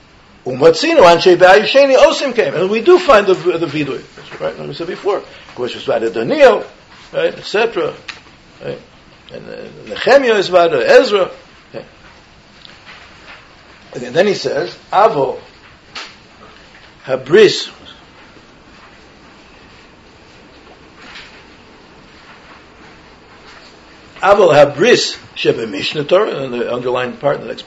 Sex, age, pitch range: male, 60-79, 170-240 Hz